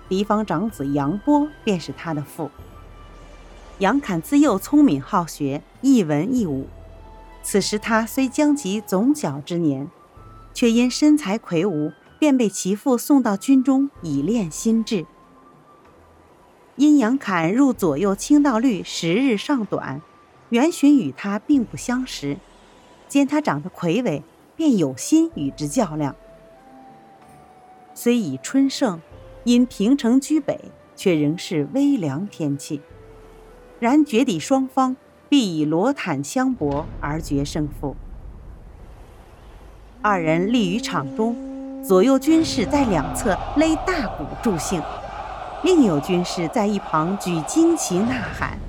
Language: Chinese